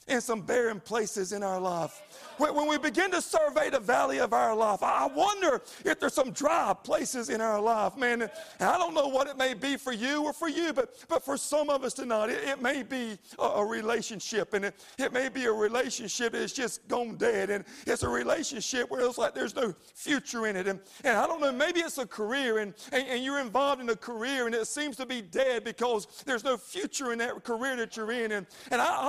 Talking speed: 230 wpm